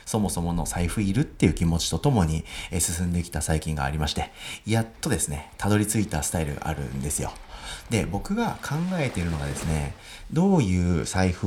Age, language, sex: 40-59, Japanese, male